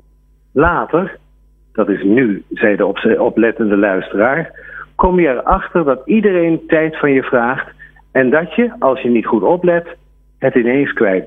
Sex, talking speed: male, 150 wpm